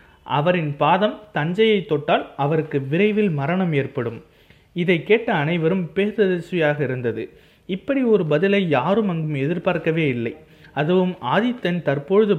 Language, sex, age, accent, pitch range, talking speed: Tamil, male, 30-49, native, 150-195 Hz, 110 wpm